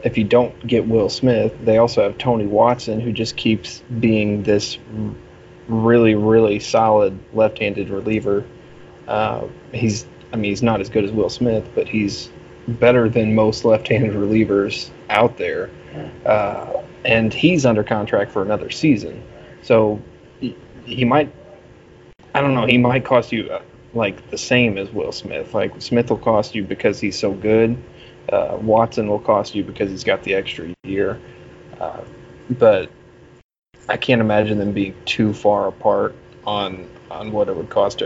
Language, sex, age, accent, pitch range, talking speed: English, male, 20-39, American, 105-115 Hz, 160 wpm